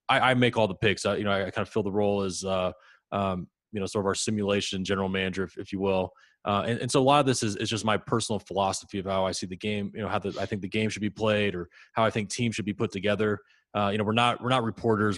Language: English